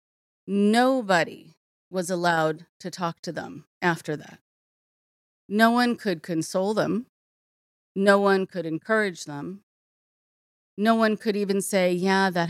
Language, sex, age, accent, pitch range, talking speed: English, female, 30-49, American, 175-220 Hz, 125 wpm